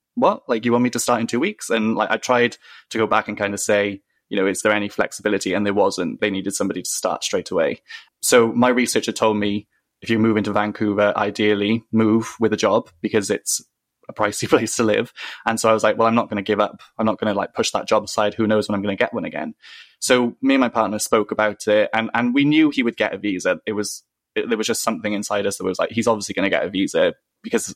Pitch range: 100-115 Hz